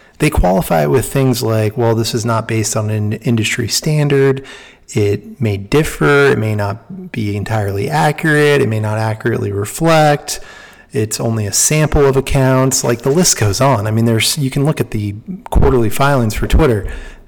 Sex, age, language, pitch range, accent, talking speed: male, 30-49, English, 110-130 Hz, American, 180 wpm